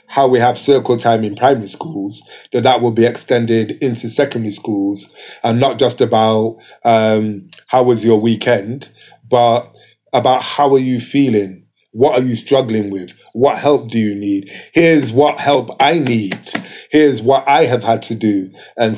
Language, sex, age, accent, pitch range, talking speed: English, male, 30-49, British, 110-130 Hz, 170 wpm